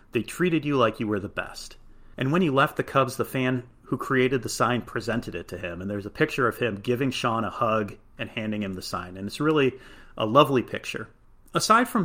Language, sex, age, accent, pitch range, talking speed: English, male, 30-49, American, 105-140 Hz, 235 wpm